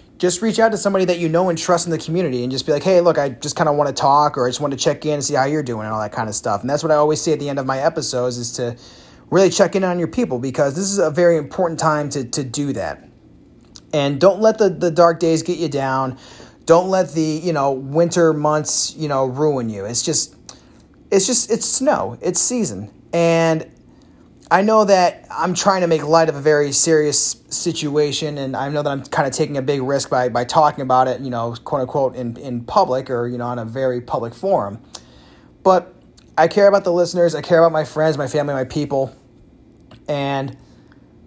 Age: 30-49